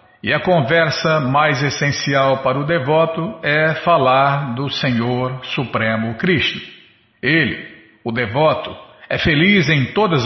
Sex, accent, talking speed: male, Brazilian, 125 wpm